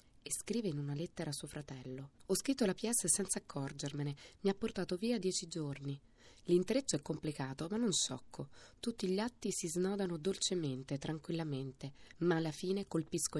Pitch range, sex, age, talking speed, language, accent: 135-185 Hz, female, 20-39, 165 wpm, Italian, native